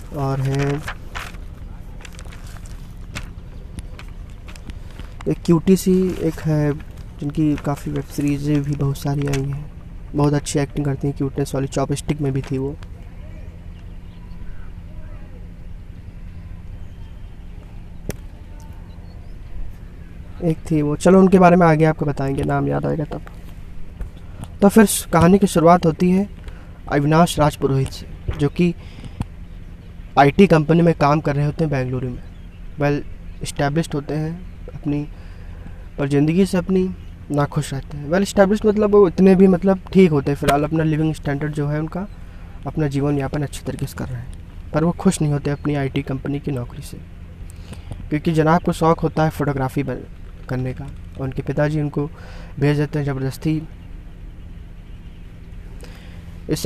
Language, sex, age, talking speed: Hindi, male, 20-39, 140 wpm